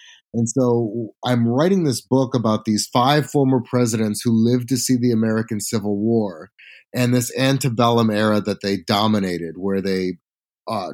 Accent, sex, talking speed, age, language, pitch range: American, male, 160 wpm, 30-49, English, 110-145 Hz